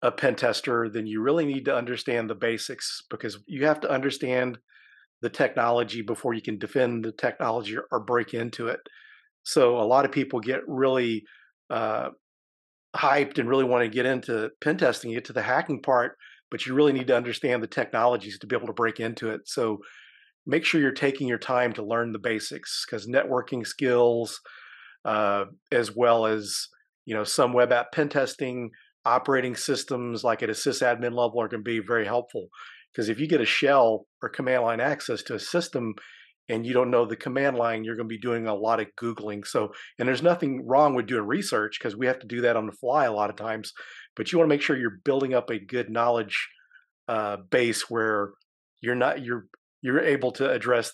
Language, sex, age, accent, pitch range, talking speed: English, male, 40-59, American, 115-130 Hz, 205 wpm